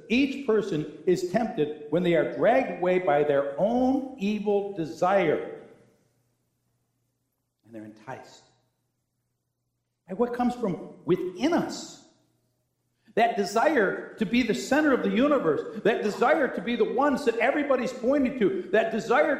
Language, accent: English, American